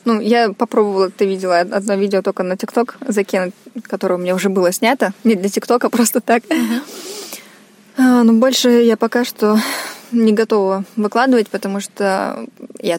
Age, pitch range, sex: 20-39, 200-245 Hz, female